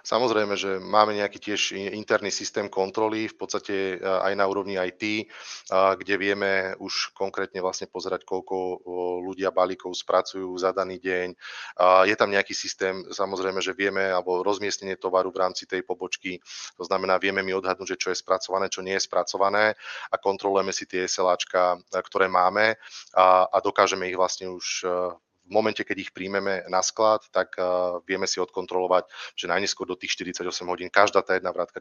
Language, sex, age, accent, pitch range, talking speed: Czech, male, 30-49, native, 95-100 Hz, 165 wpm